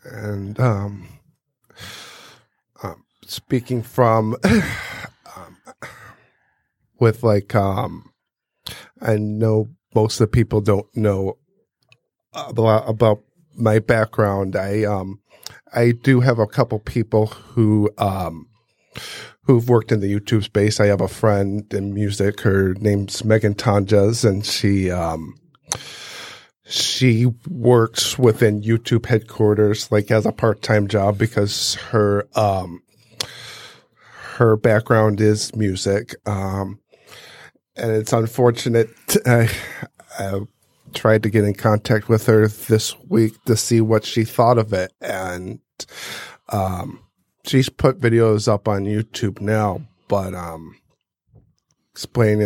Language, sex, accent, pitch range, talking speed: English, male, American, 100-115 Hz, 115 wpm